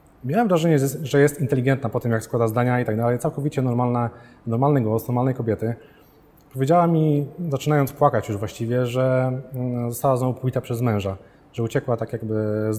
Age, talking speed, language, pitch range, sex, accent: 20-39, 170 wpm, Polish, 120-145 Hz, male, native